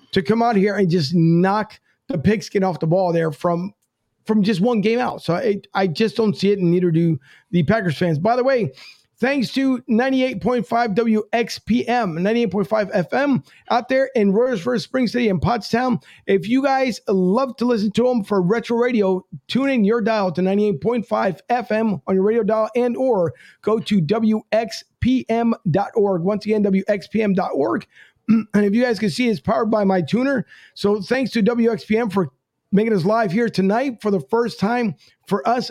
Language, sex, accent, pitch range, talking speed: English, male, American, 190-230 Hz, 180 wpm